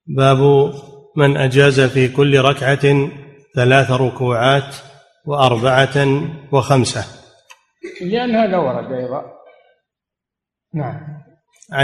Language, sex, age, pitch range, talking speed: Arabic, male, 30-49, 125-135 Hz, 70 wpm